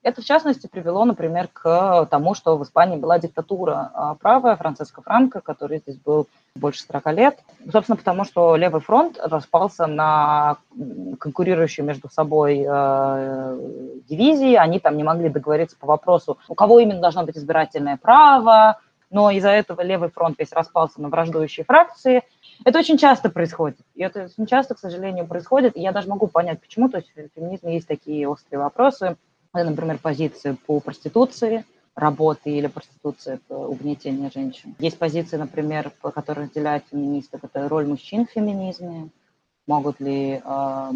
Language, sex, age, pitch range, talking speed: Russian, female, 20-39, 150-220 Hz, 155 wpm